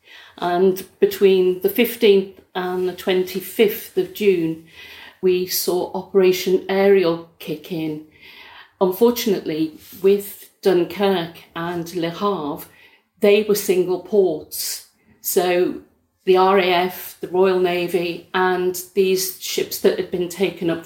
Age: 50-69